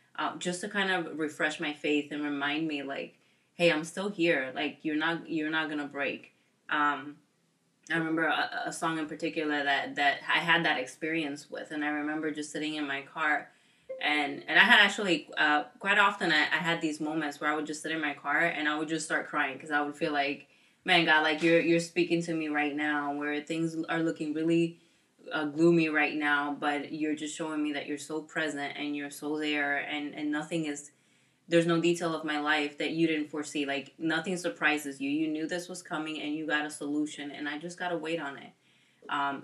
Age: 20-39